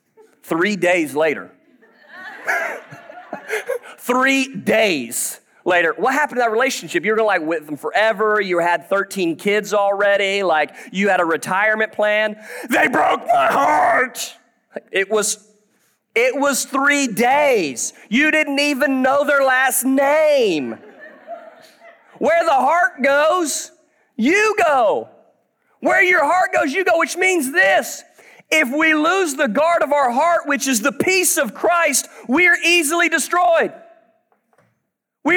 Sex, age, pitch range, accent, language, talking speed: male, 40-59, 210-335 Hz, American, English, 135 wpm